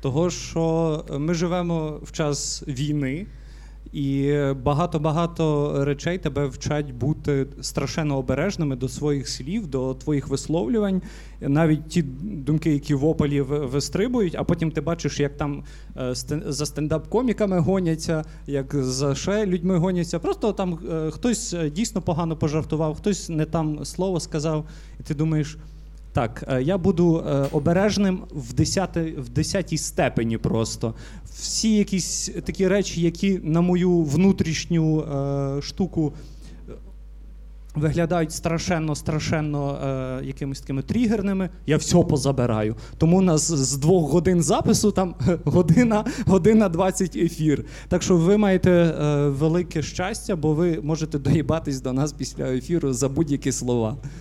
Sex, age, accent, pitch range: male, 30-49, native, 145-180 Hz